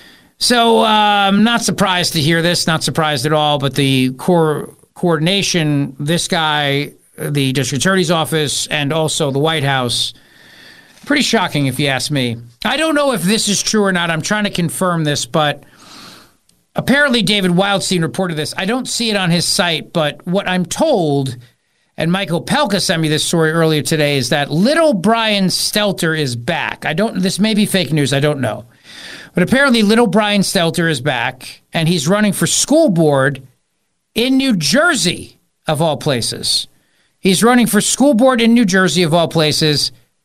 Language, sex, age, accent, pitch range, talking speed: English, male, 50-69, American, 150-205 Hz, 180 wpm